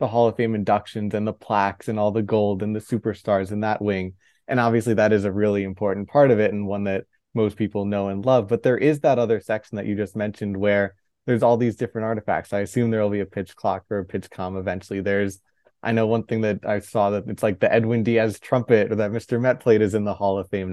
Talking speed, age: 265 wpm, 20-39